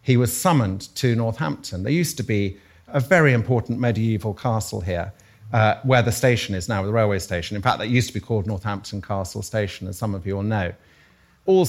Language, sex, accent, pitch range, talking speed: English, male, British, 105-135 Hz, 210 wpm